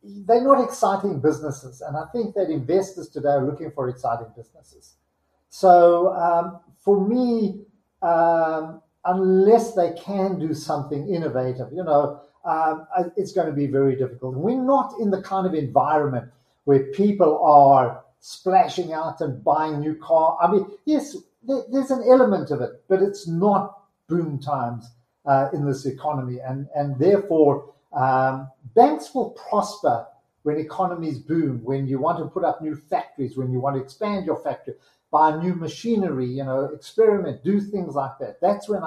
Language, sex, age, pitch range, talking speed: English, male, 50-69, 135-190 Hz, 160 wpm